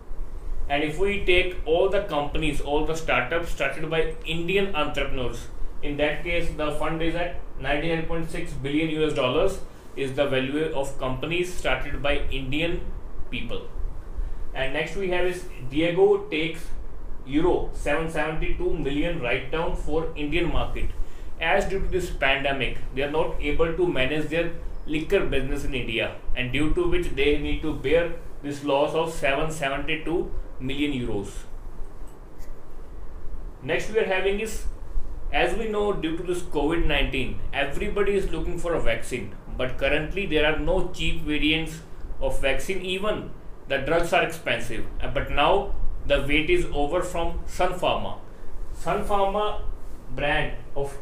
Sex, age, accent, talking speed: male, 30-49, Indian, 150 wpm